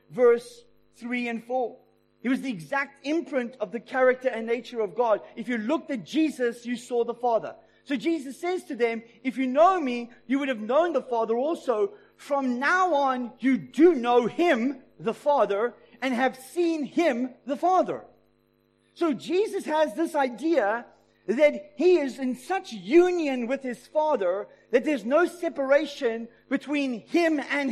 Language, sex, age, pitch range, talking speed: English, male, 40-59, 245-315 Hz, 165 wpm